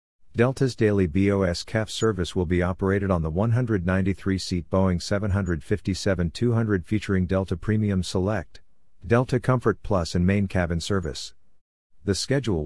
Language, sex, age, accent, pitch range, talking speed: English, male, 50-69, American, 90-105 Hz, 125 wpm